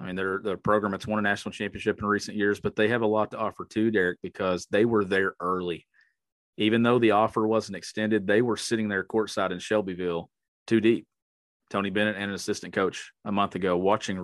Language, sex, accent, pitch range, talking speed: English, male, American, 95-110 Hz, 220 wpm